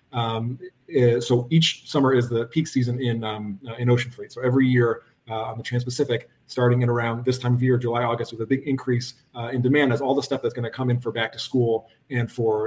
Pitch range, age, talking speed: 115-130 Hz, 40-59, 240 wpm